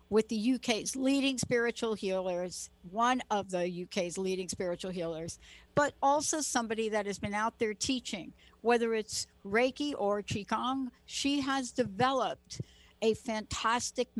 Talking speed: 135 wpm